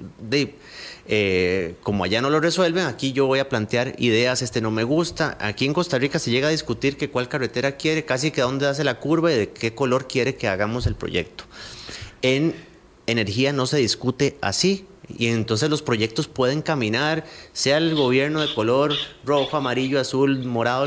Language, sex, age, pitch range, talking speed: Spanish, male, 30-49, 110-145 Hz, 185 wpm